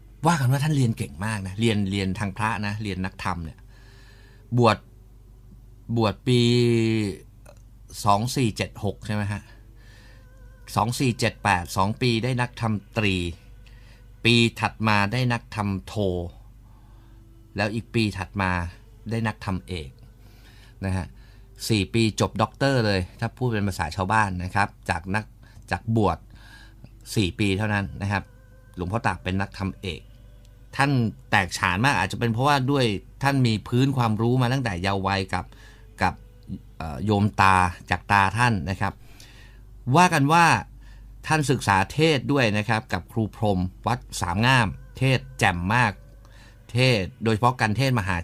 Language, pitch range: Thai, 100-120 Hz